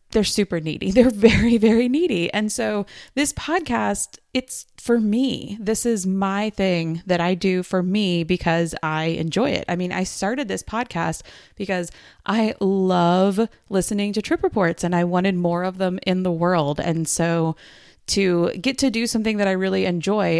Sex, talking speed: female, 175 wpm